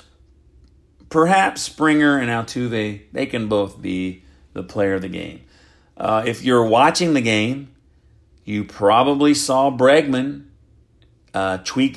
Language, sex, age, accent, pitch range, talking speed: English, male, 40-59, American, 100-140 Hz, 125 wpm